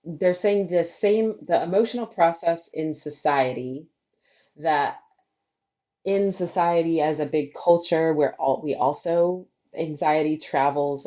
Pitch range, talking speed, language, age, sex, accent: 135-165 Hz, 120 wpm, English, 30-49, female, American